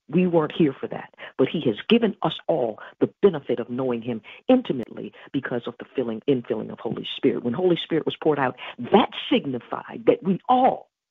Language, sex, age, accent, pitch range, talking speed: English, female, 50-69, American, 130-200 Hz, 195 wpm